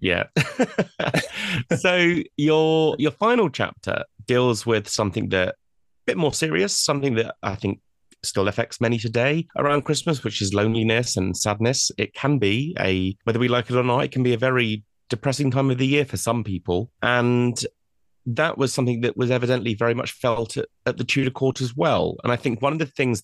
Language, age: English, 30-49